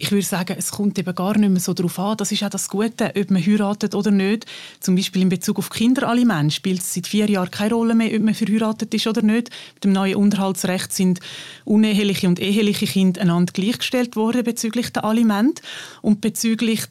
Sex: female